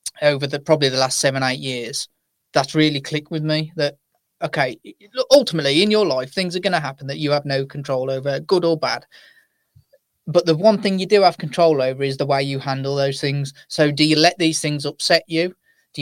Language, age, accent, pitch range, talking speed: English, 30-49, British, 145-170 Hz, 215 wpm